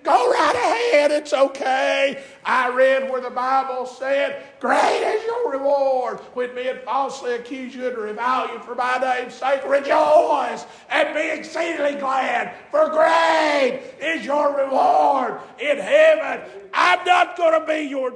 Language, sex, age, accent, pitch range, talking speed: English, male, 50-69, American, 245-315 Hz, 150 wpm